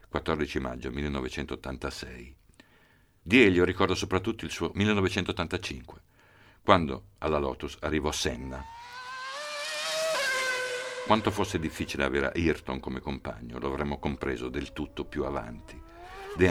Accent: native